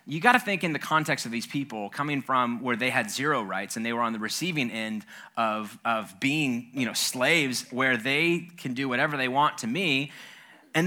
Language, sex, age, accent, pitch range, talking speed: English, male, 20-39, American, 120-160 Hz, 215 wpm